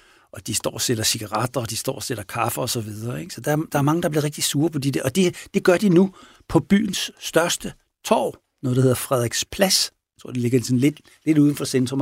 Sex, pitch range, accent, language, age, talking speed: male, 125-165 Hz, native, Danish, 60-79, 250 wpm